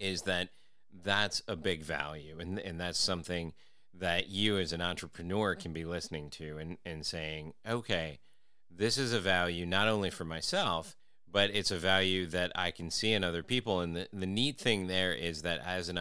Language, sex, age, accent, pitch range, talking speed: English, male, 30-49, American, 80-95 Hz, 195 wpm